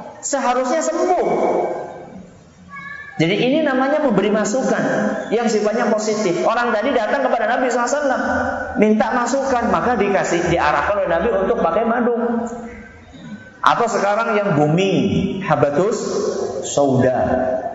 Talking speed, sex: 110 wpm, male